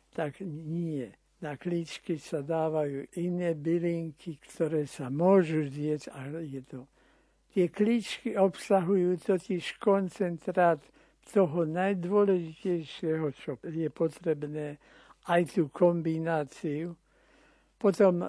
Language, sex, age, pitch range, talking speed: Slovak, male, 60-79, 155-185 Hz, 95 wpm